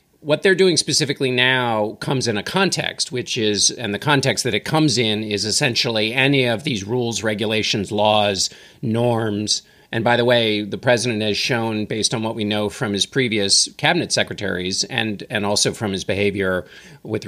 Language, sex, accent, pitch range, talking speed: English, male, American, 110-145 Hz, 185 wpm